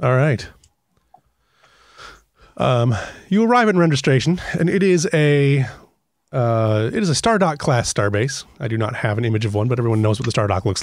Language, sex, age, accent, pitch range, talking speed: English, male, 30-49, American, 110-150 Hz, 195 wpm